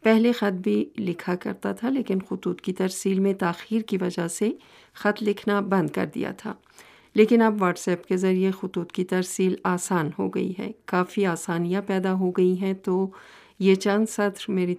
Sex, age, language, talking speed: female, 50-69, Urdu, 185 wpm